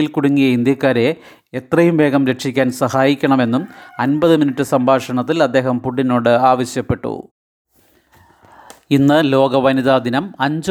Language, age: Malayalam, 30-49